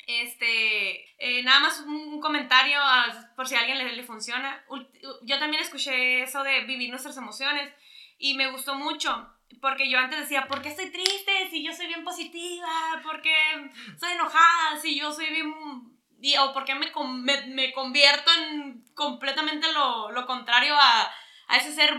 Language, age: Spanish, 10-29